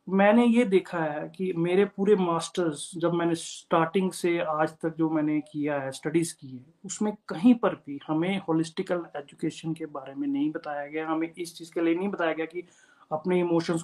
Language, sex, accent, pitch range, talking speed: Hindi, male, native, 160-200 Hz, 195 wpm